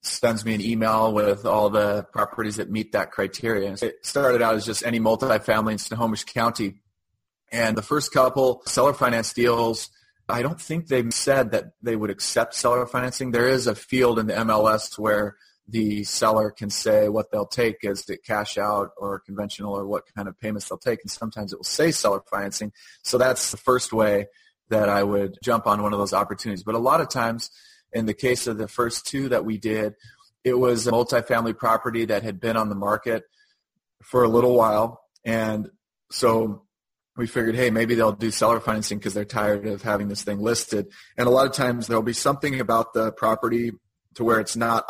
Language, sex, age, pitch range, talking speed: English, male, 30-49, 105-120 Hz, 205 wpm